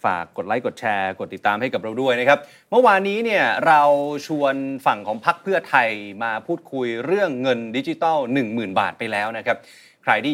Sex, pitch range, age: male, 135-190 Hz, 30-49